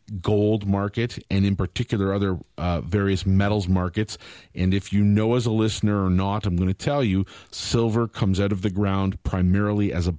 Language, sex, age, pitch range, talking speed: English, male, 40-59, 90-105 Hz, 195 wpm